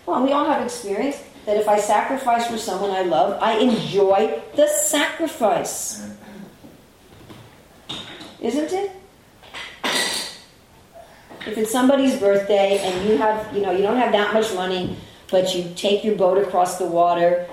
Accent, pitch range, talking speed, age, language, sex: American, 195-285 Hz, 140 wpm, 50-69, English, female